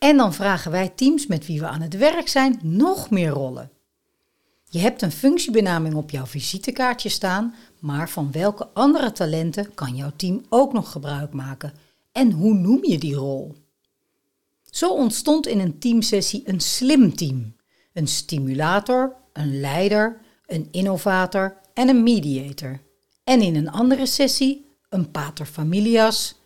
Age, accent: 60-79, Dutch